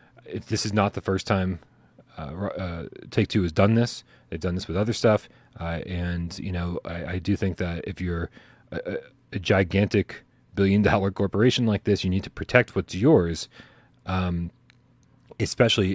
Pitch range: 90-110 Hz